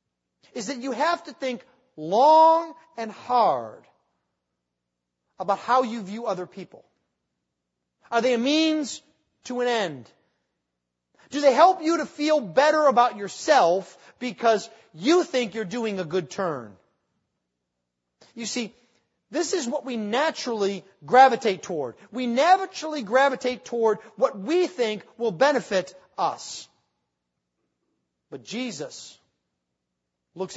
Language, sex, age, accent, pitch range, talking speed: English, male, 40-59, American, 170-275 Hz, 120 wpm